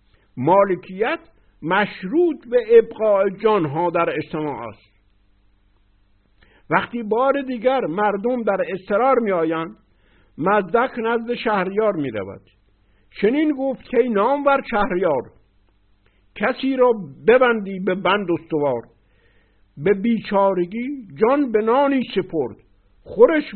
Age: 60-79